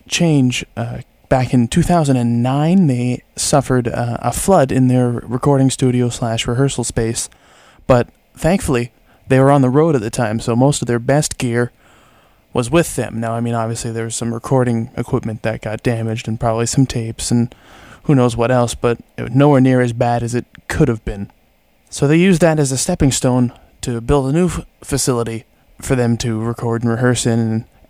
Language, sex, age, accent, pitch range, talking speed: English, male, 20-39, American, 115-135 Hz, 190 wpm